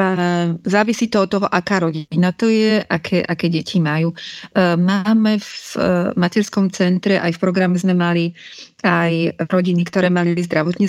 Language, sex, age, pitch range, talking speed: Slovak, female, 30-49, 170-185 Hz, 145 wpm